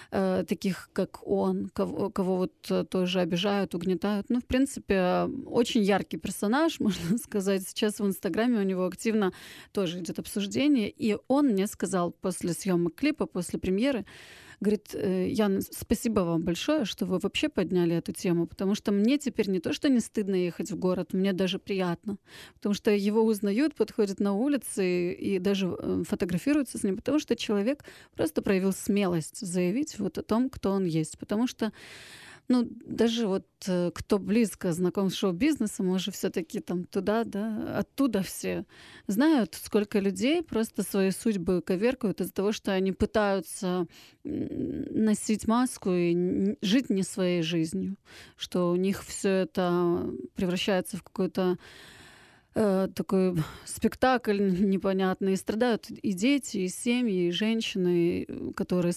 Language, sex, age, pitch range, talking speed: Ukrainian, female, 30-49, 185-220 Hz, 145 wpm